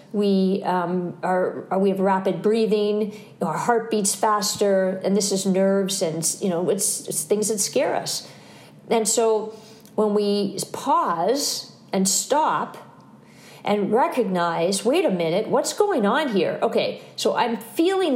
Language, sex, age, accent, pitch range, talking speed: English, female, 50-69, American, 190-220 Hz, 155 wpm